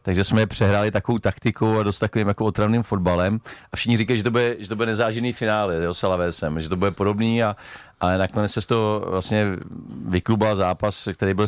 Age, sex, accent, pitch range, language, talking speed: 40-59, male, native, 95-110 Hz, Czech, 185 wpm